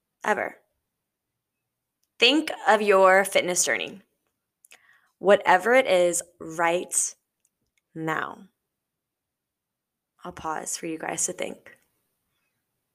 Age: 10-29